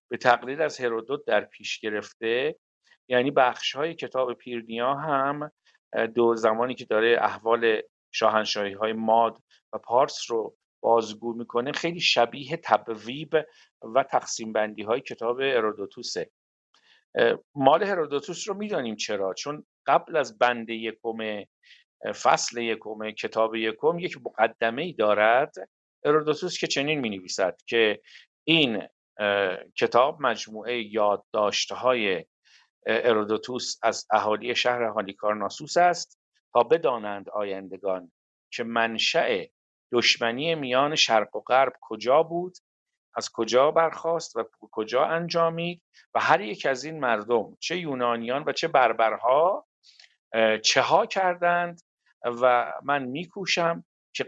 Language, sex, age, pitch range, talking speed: Persian, male, 50-69, 110-165 Hz, 115 wpm